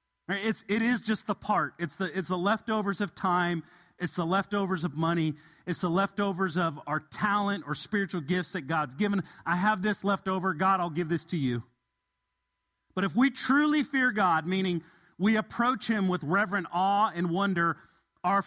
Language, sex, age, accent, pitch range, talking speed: English, male, 40-59, American, 170-215 Hz, 175 wpm